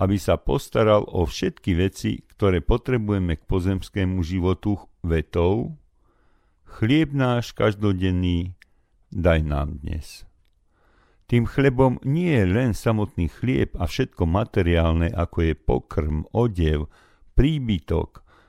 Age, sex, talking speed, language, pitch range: 50-69, male, 105 wpm, Slovak, 85-115 Hz